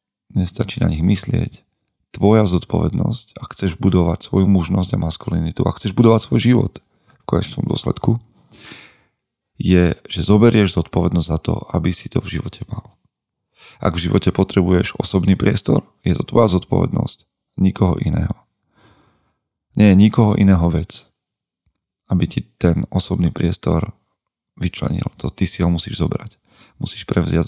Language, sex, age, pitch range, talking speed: Slovak, male, 40-59, 85-105 Hz, 140 wpm